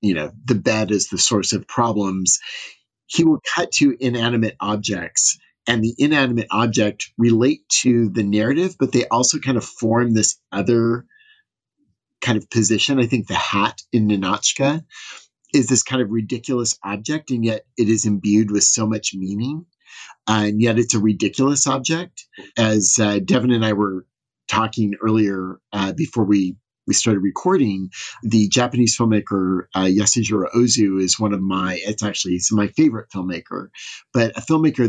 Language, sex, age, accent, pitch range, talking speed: English, male, 30-49, American, 105-125 Hz, 160 wpm